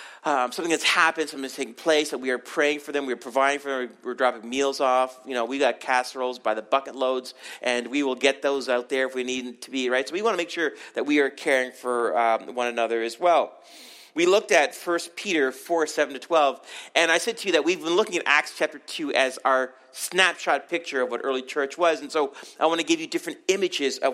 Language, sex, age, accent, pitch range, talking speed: English, male, 40-59, American, 130-195 Hz, 250 wpm